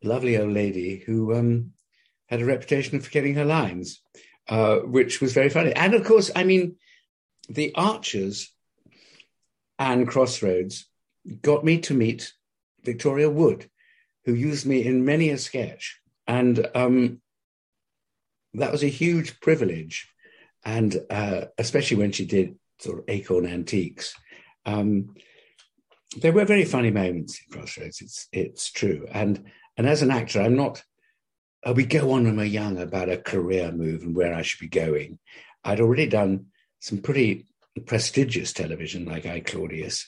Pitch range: 105-155 Hz